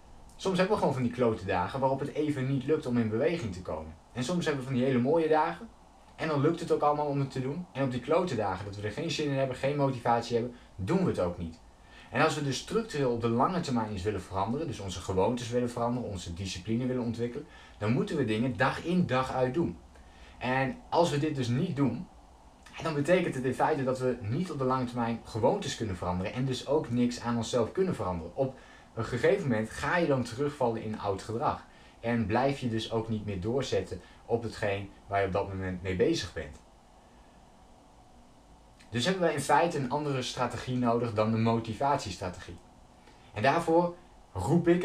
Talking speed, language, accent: 220 wpm, Dutch, Dutch